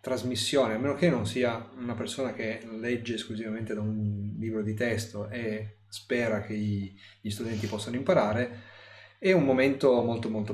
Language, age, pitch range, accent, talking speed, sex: Italian, 30-49, 105-130 Hz, native, 160 wpm, male